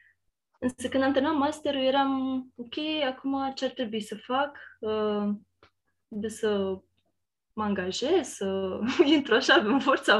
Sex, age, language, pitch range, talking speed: female, 20-39, Romanian, 205-255 Hz, 125 wpm